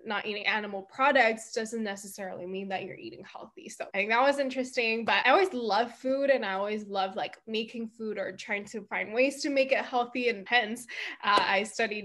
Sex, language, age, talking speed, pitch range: female, English, 10-29, 215 wpm, 200-255 Hz